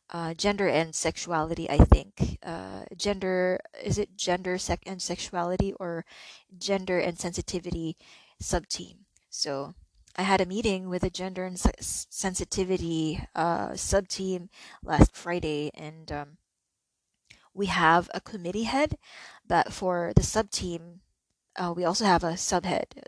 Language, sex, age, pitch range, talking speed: English, female, 20-39, 170-190 Hz, 140 wpm